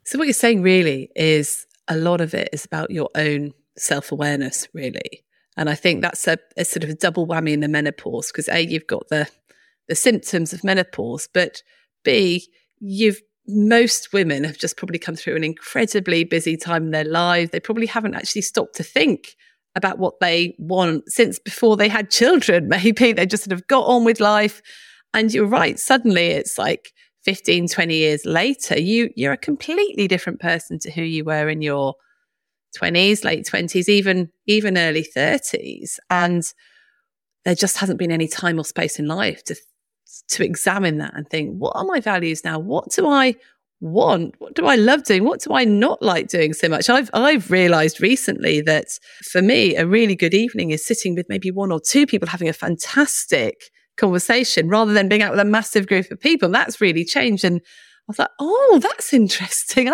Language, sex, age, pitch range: English, female, 30-49, 165-235 Hz